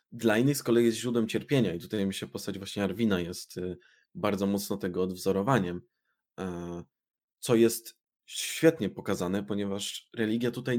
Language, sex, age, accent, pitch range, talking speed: Polish, male, 20-39, native, 100-120 Hz, 145 wpm